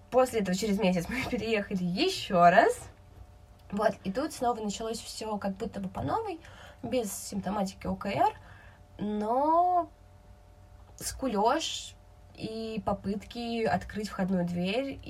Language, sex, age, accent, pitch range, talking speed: Russian, female, 20-39, native, 175-220 Hz, 110 wpm